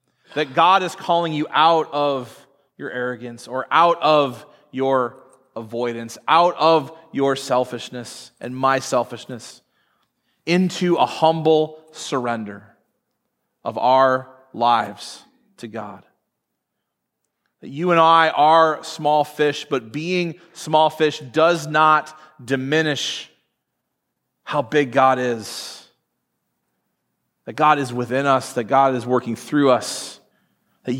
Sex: male